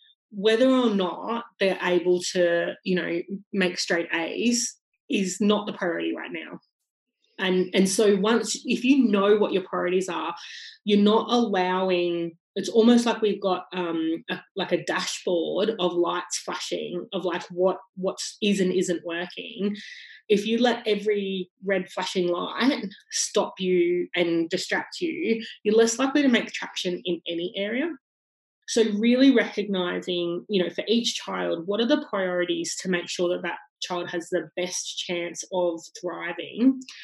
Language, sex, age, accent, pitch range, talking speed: English, female, 20-39, Australian, 180-230 Hz, 155 wpm